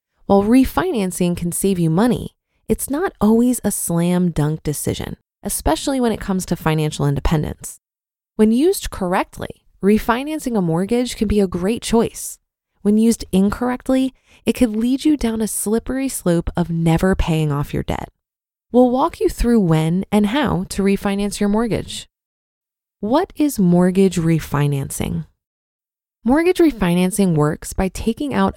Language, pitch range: English, 170-235 Hz